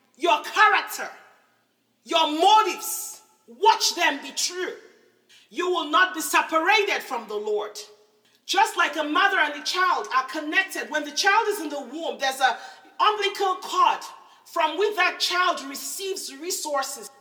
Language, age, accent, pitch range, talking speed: English, 40-59, Nigerian, 300-390 Hz, 145 wpm